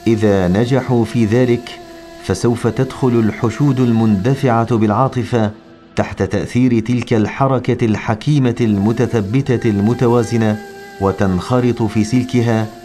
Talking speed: 90 wpm